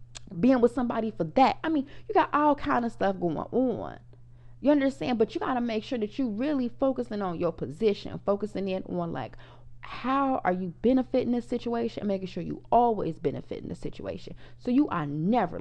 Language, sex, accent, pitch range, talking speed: English, female, American, 185-250 Hz, 200 wpm